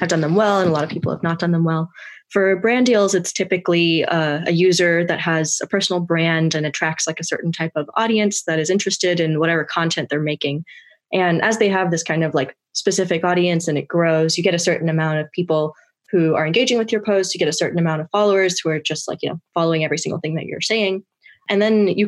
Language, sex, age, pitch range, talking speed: English, female, 20-39, 160-190 Hz, 245 wpm